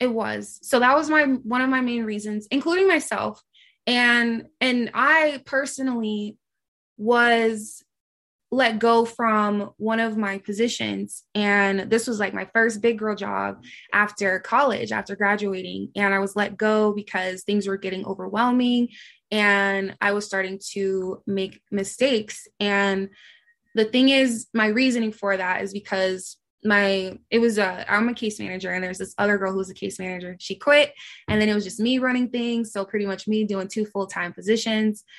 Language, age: English, 20-39